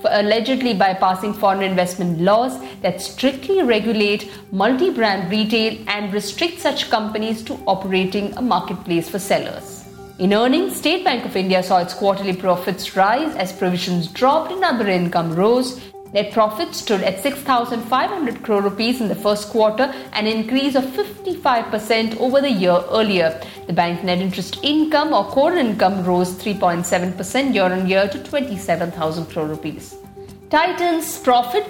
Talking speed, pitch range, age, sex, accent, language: 140 wpm, 190-255 Hz, 50-69, female, Indian, English